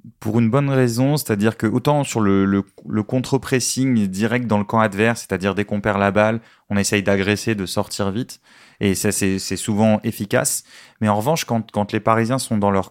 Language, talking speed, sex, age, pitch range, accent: French, 210 wpm, male, 30-49, 110-145 Hz, French